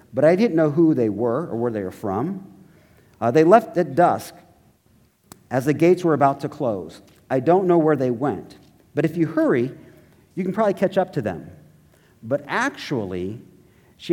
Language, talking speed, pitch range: English, 185 wpm, 115-170 Hz